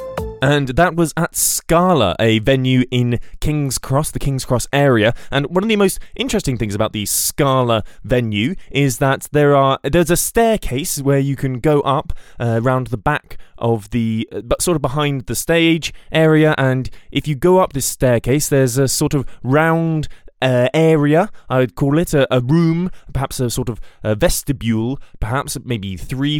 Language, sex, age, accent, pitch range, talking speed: English, male, 20-39, British, 115-160 Hz, 180 wpm